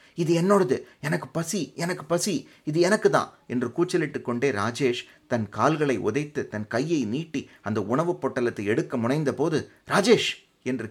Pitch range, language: 110-145 Hz, Tamil